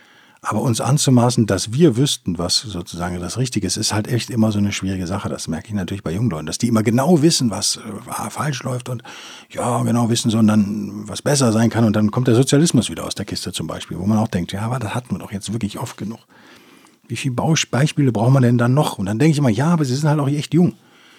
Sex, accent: male, German